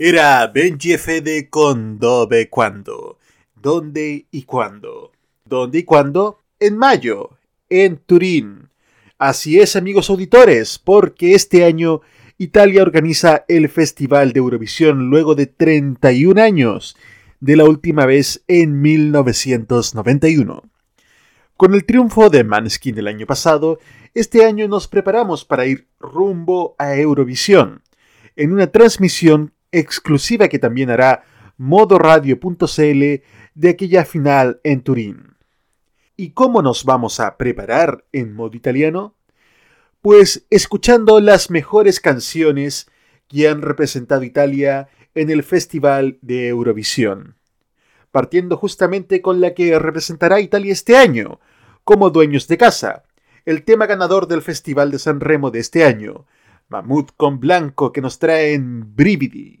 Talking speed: 125 wpm